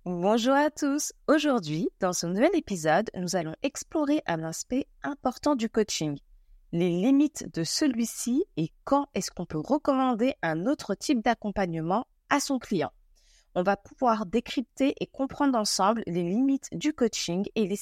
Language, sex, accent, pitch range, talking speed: French, female, French, 185-255 Hz, 155 wpm